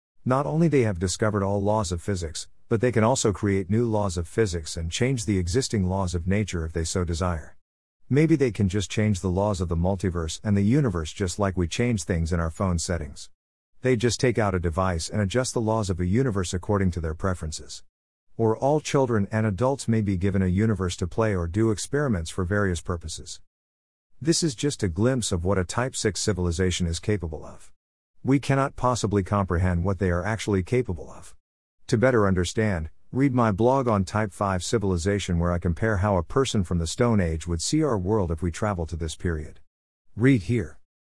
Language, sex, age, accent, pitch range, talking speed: English, male, 50-69, American, 85-115 Hz, 210 wpm